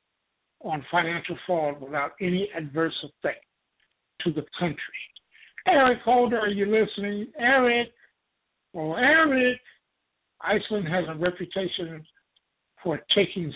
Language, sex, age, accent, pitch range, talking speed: English, male, 60-79, American, 155-205 Hz, 110 wpm